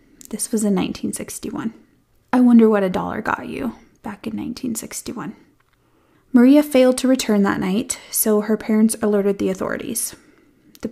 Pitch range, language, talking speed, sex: 205-245 Hz, English, 150 wpm, female